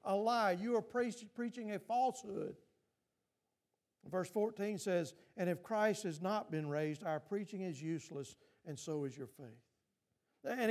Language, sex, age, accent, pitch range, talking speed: English, male, 50-69, American, 205-270 Hz, 155 wpm